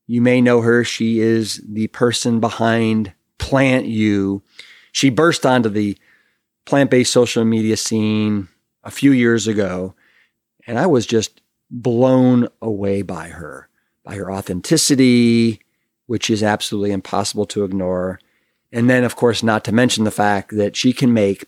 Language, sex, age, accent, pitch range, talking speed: English, male, 40-59, American, 105-125 Hz, 150 wpm